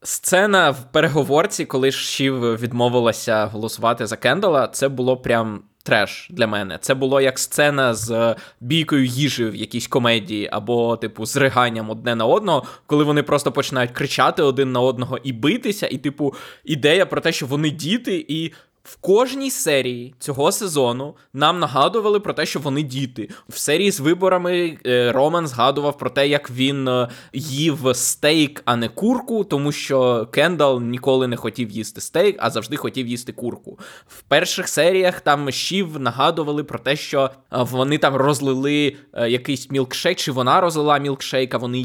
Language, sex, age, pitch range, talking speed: Ukrainian, male, 20-39, 125-150 Hz, 160 wpm